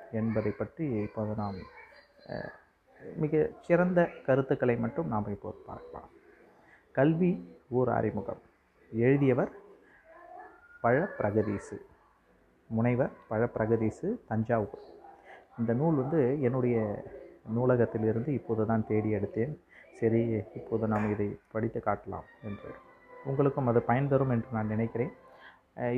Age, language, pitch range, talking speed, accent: 30-49, Tamil, 110-150 Hz, 95 wpm, native